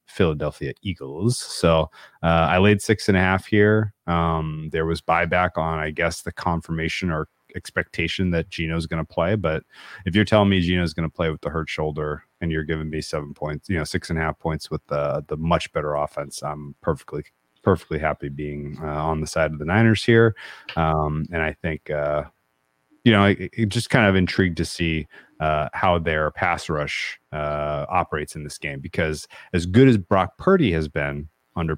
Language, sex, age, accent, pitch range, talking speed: English, male, 30-49, American, 75-95 Hz, 195 wpm